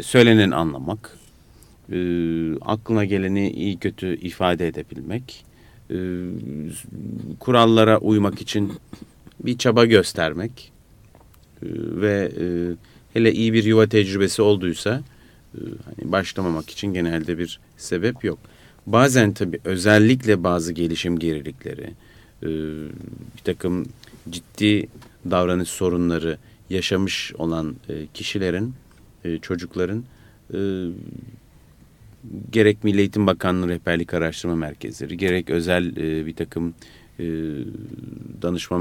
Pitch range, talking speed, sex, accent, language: 80-105 Hz, 90 wpm, male, native, Turkish